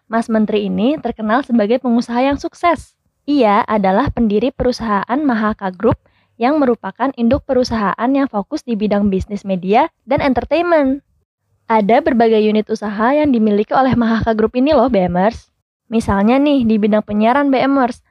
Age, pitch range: 20-39, 210-265 Hz